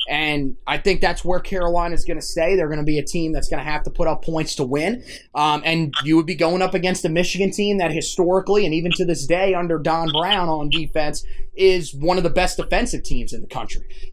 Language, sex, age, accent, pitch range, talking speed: English, male, 20-39, American, 155-195 Hz, 250 wpm